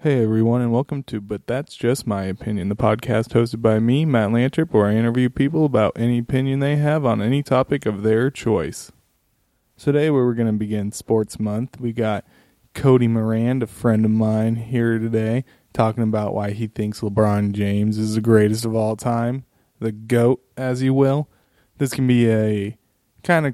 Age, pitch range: 20-39, 110-130 Hz